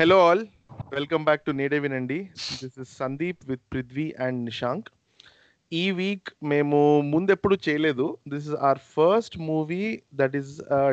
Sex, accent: male, native